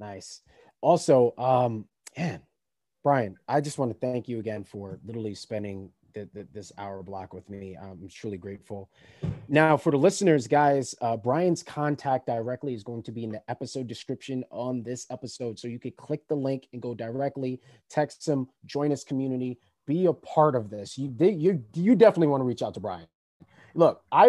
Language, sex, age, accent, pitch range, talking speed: English, male, 30-49, American, 120-165 Hz, 190 wpm